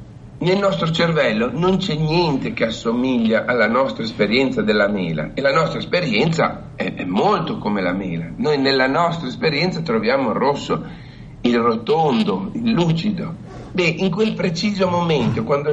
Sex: male